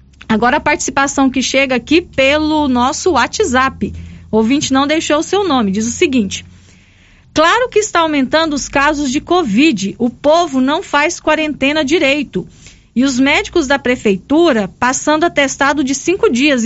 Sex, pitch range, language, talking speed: female, 235-305 Hz, Portuguese, 150 wpm